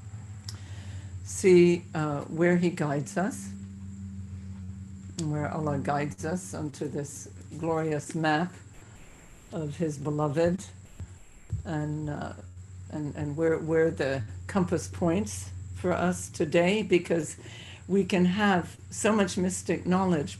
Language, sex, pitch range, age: English, female, 105-170 Hz, 60-79